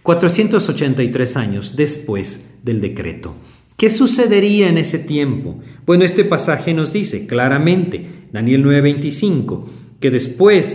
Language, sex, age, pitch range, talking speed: Spanish, male, 50-69, 115-160 Hz, 110 wpm